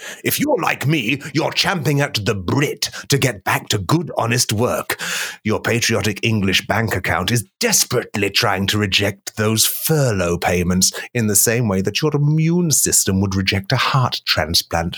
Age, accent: 30-49, British